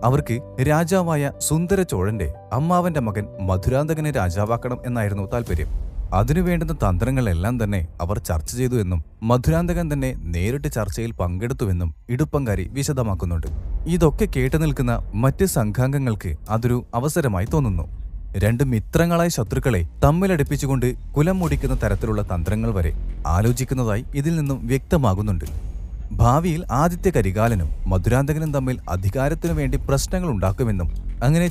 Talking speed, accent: 100 wpm, native